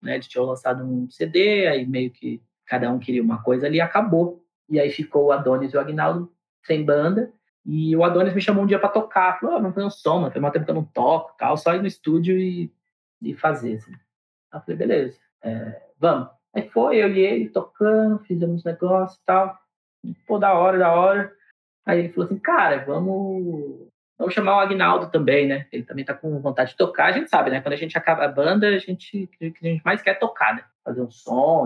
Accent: Brazilian